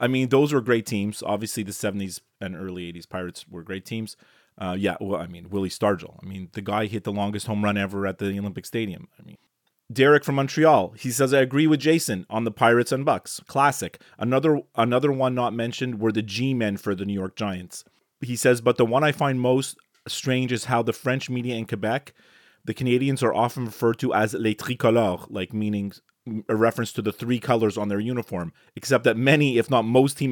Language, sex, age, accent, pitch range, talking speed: English, male, 30-49, American, 100-130 Hz, 220 wpm